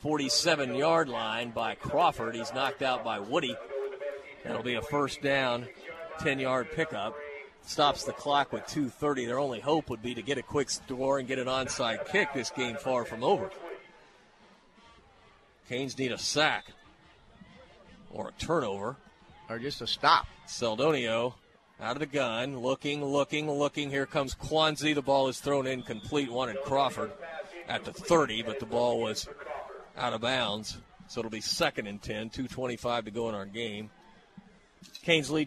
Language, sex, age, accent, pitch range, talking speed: English, male, 40-59, American, 125-150 Hz, 160 wpm